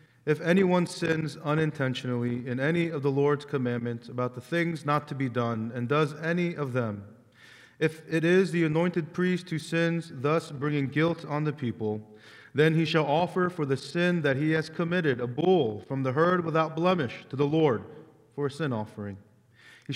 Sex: male